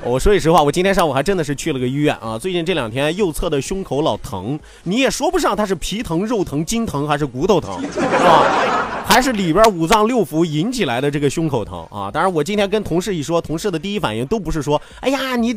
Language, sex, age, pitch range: Chinese, male, 30-49, 160-235 Hz